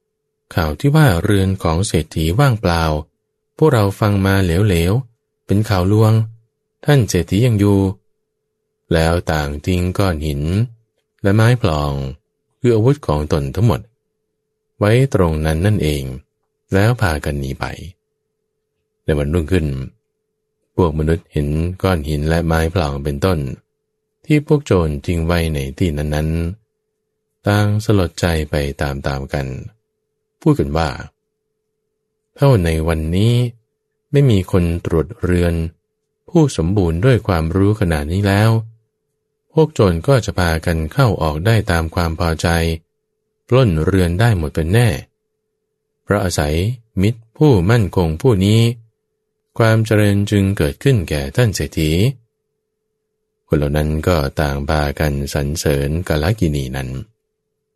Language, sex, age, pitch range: English, male, 20-39, 80-125 Hz